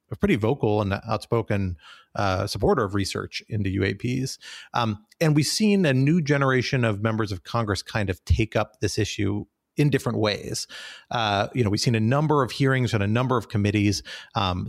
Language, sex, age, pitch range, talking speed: English, male, 40-59, 105-125 Hz, 190 wpm